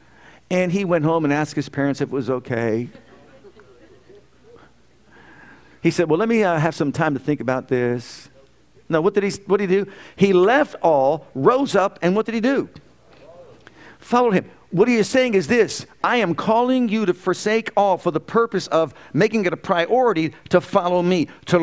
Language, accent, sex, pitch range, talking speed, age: English, American, male, 160-205 Hz, 190 wpm, 50-69